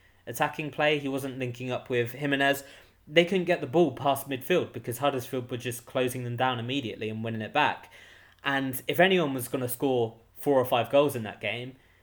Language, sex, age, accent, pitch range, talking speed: English, male, 20-39, British, 105-145 Hz, 200 wpm